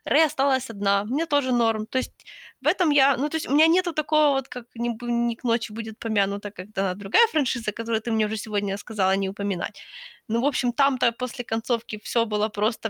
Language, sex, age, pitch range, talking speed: Ukrainian, female, 20-39, 215-275 Hz, 220 wpm